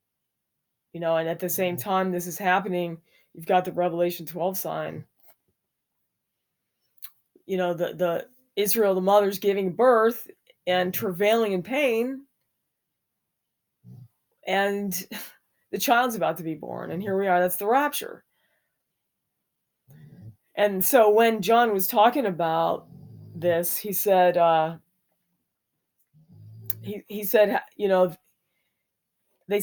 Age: 20-39